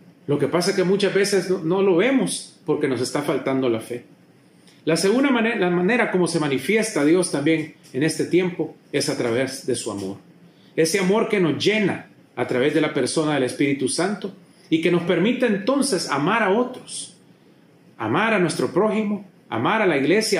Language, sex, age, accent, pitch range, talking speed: Spanish, male, 40-59, Mexican, 155-215 Hz, 190 wpm